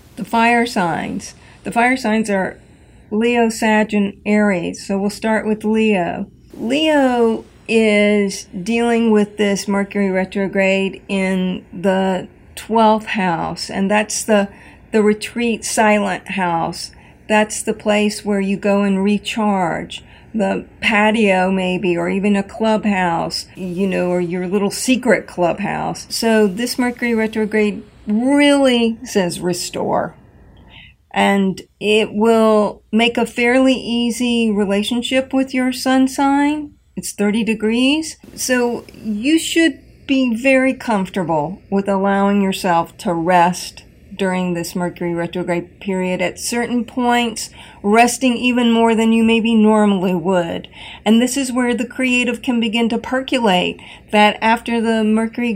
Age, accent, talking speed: 50-69, American, 130 wpm